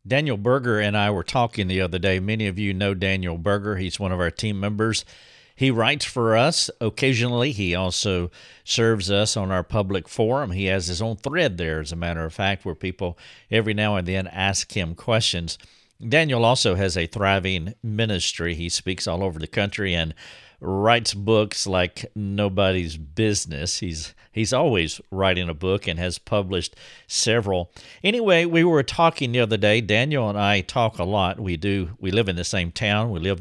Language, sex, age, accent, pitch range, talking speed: English, male, 50-69, American, 95-115 Hz, 190 wpm